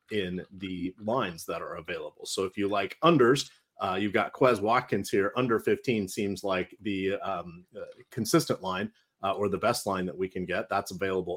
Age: 30-49